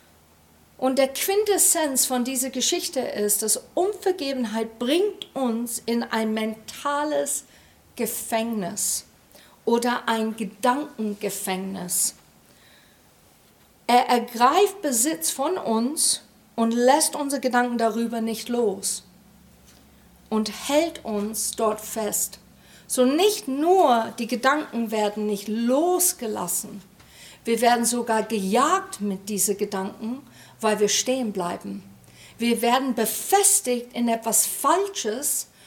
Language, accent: German, German